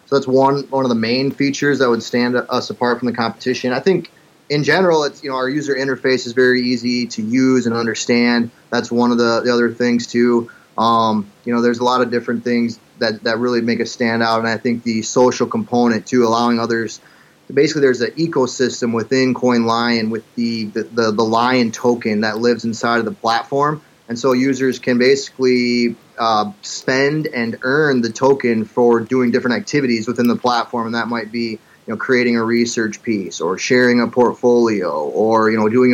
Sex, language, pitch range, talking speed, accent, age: male, English, 115-125 Hz, 200 wpm, American, 30-49